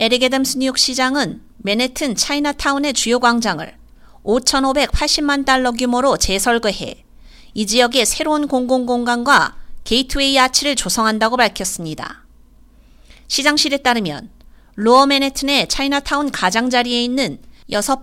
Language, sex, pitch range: Korean, female, 235-280 Hz